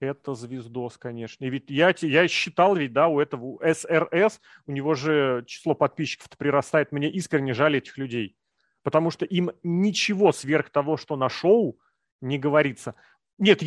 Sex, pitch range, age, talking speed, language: male, 135-175 Hz, 30-49, 160 wpm, Russian